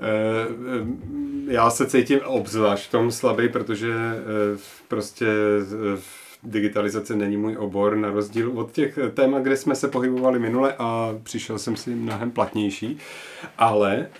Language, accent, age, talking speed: Czech, native, 40-59, 125 wpm